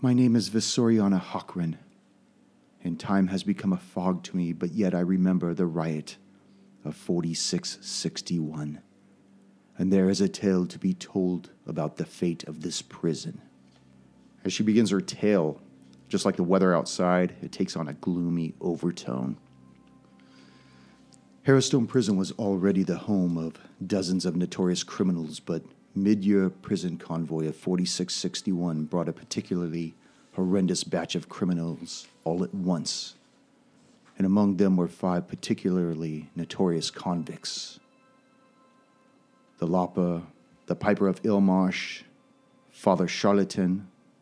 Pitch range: 85-100 Hz